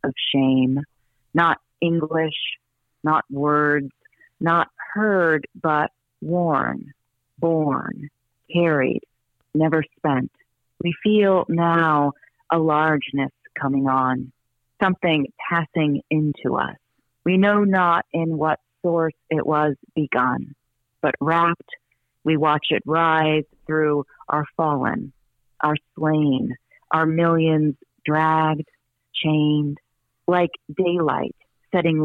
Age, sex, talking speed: 40-59, female, 95 wpm